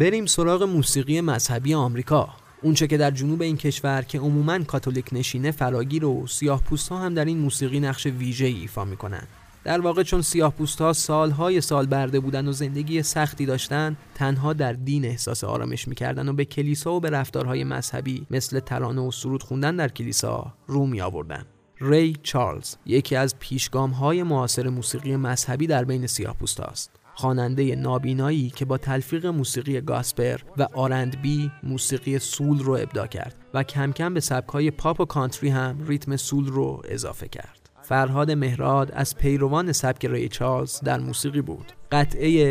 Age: 30-49